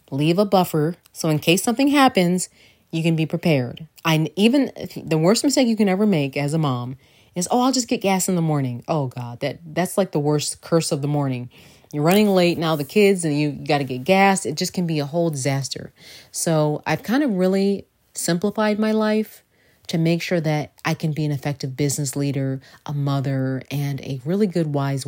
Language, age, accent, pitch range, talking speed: English, 30-49, American, 135-170 Hz, 215 wpm